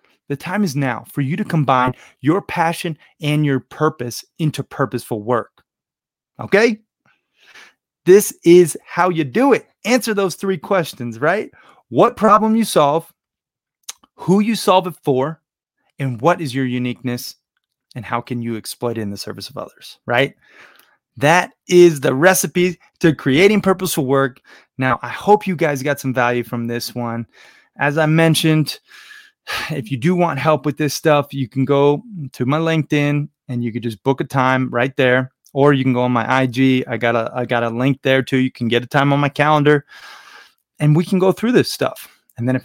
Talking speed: 185 wpm